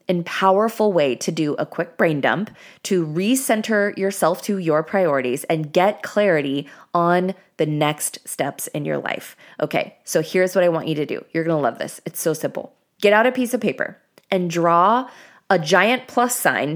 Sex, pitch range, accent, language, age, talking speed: female, 165-210 Hz, American, English, 20-39, 195 wpm